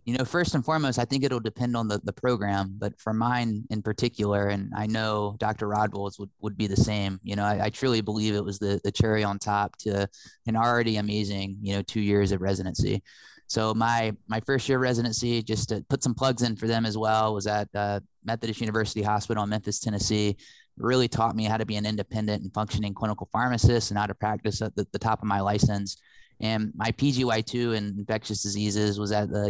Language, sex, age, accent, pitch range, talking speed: English, male, 20-39, American, 105-115 Hz, 220 wpm